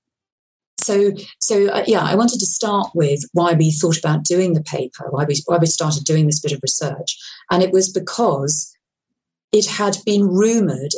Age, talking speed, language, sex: 40-59, 185 wpm, English, female